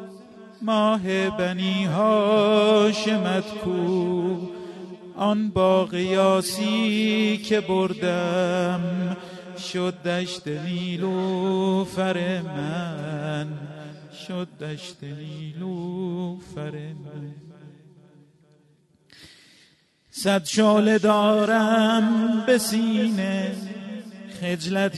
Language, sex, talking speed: Persian, male, 50 wpm